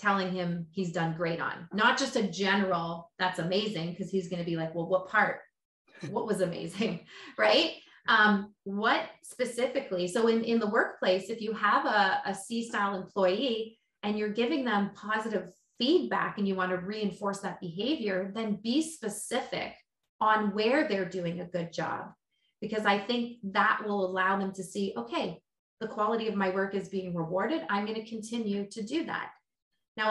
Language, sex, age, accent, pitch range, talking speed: English, female, 30-49, American, 190-230 Hz, 175 wpm